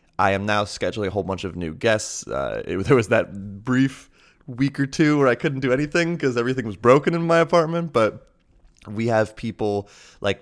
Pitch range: 90-110 Hz